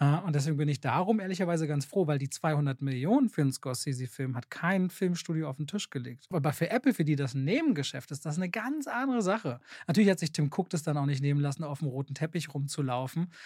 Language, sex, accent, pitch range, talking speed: German, male, German, 145-180 Hz, 230 wpm